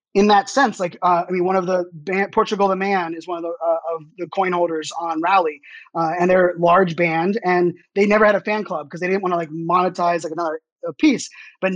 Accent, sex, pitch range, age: American, male, 175-210 Hz, 20-39